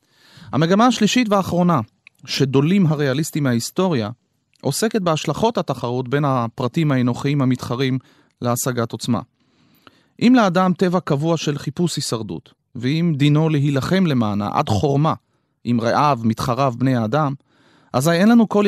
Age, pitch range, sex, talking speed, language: 30-49, 135-180 Hz, male, 120 wpm, Hebrew